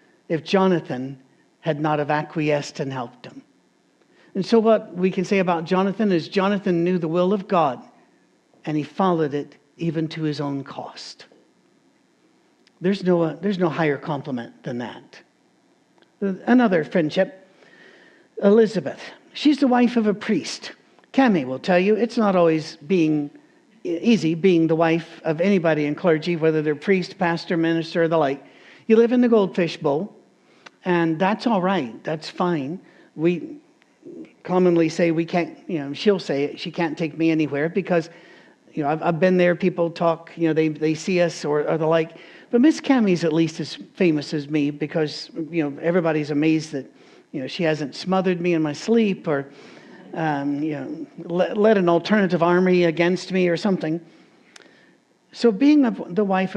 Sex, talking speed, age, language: male, 170 wpm, 60-79, English